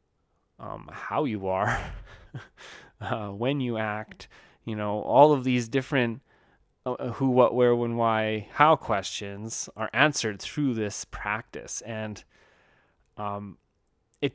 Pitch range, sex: 95-120 Hz, male